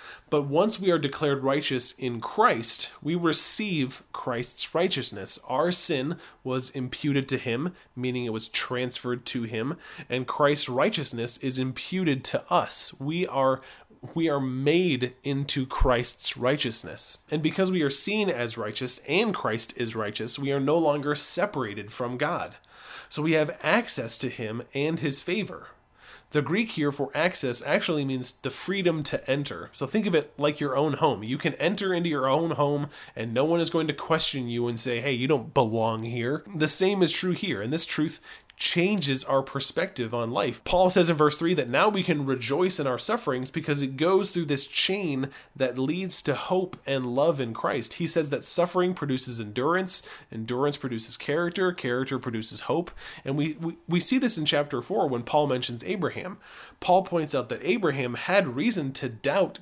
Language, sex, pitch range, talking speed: English, male, 125-165 Hz, 180 wpm